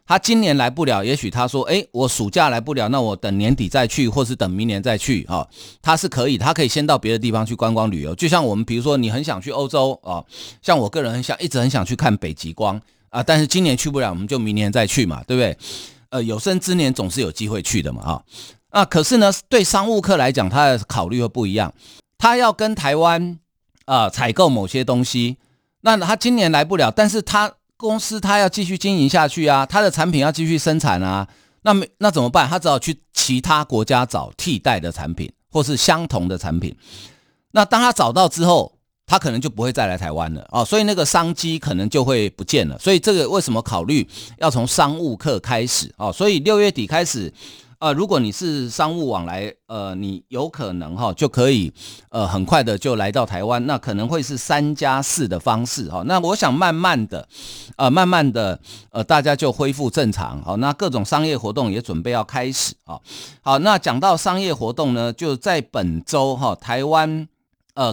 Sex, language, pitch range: male, Chinese, 110-160 Hz